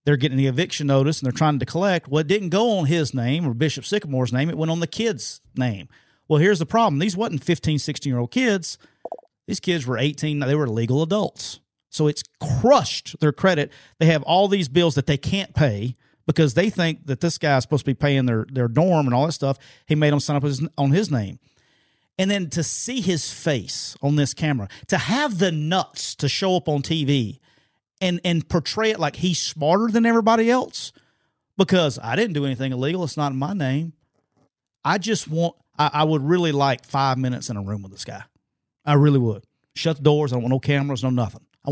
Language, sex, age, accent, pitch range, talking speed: English, male, 40-59, American, 130-170 Hz, 220 wpm